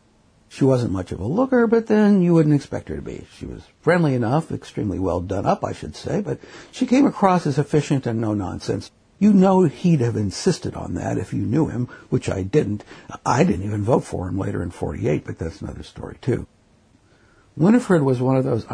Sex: male